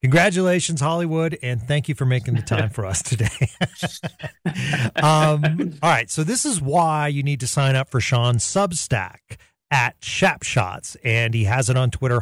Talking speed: 170 wpm